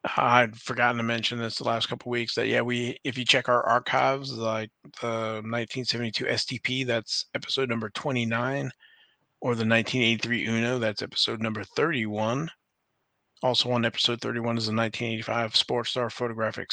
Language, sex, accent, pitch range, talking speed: English, male, American, 115-125 Hz, 155 wpm